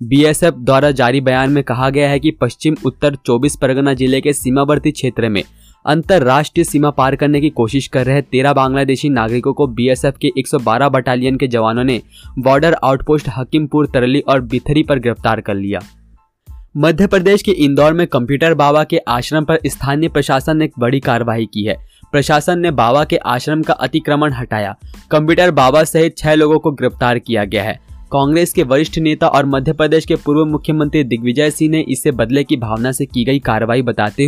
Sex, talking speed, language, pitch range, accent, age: male, 185 wpm, Hindi, 125-155 Hz, native, 20-39